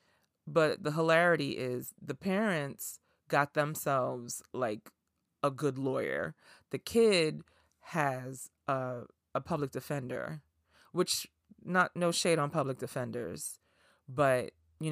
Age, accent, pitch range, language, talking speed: 30-49, American, 135-195 Hz, English, 115 wpm